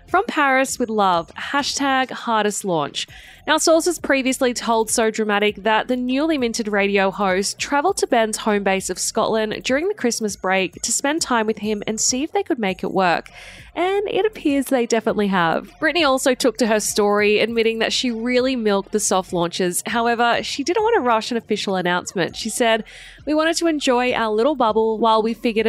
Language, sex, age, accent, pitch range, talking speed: English, female, 10-29, Australian, 200-265 Hz, 195 wpm